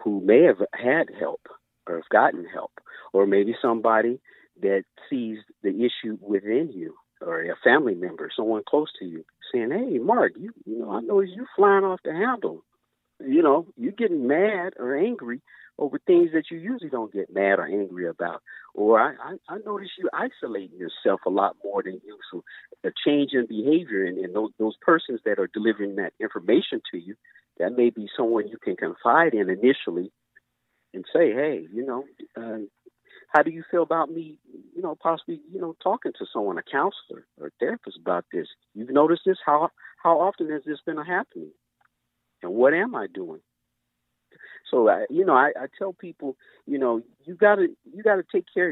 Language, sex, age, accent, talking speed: English, male, 50-69, American, 190 wpm